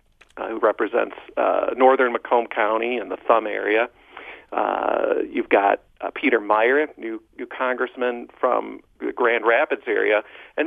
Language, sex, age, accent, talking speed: English, male, 40-59, American, 145 wpm